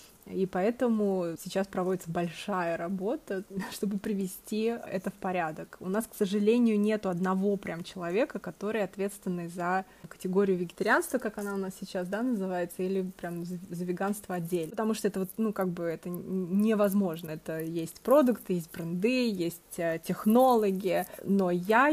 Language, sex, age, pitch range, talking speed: Russian, female, 20-39, 180-210 Hz, 150 wpm